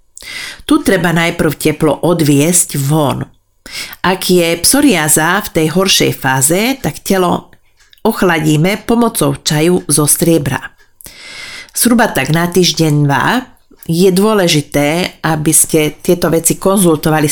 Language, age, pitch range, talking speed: Slovak, 40-59, 150-185 Hz, 105 wpm